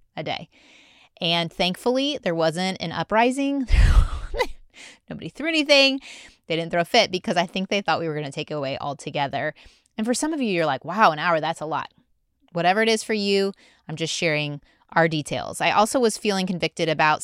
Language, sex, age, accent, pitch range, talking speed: English, female, 20-39, American, 160-230 Hz, 200 wpm